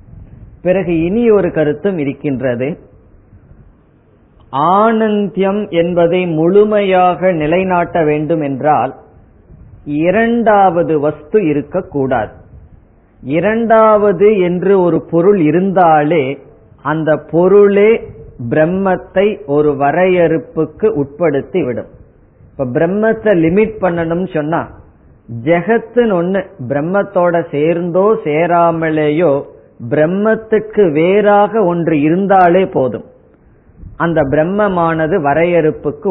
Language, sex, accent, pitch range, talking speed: Tamil, female, native, 150-190 Hz, 70 wpm